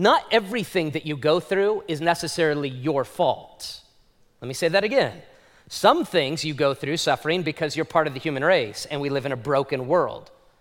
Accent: American